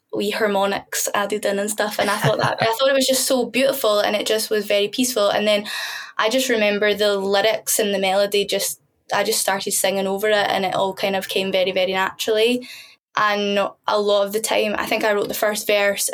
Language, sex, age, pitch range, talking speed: English, female, 10-29, 190-225 Hz, 230 wpm